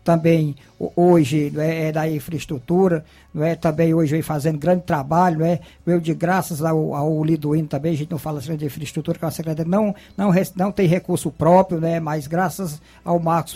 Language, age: Portuguese, 60-79